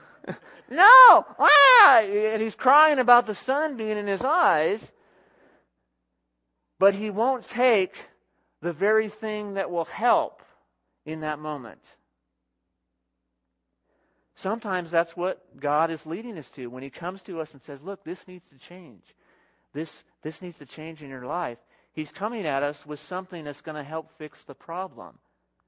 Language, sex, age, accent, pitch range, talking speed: English, male, 40-59, American, 150-230 Hz, 155 wpm